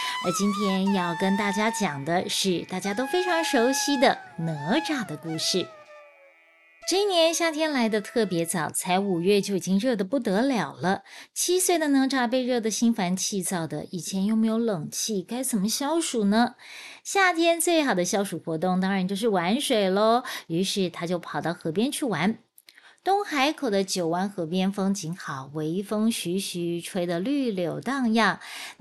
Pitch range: 185-260 Hz